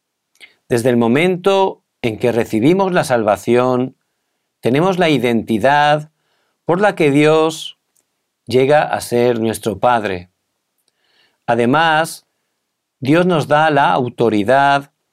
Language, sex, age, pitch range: Korean, male, 50-69, 115-155 Hz